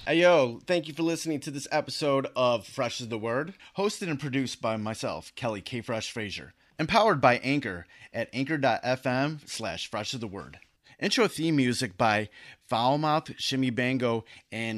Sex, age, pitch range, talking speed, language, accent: male, 30-49, 115-150 Hz, 160 wpm, English, American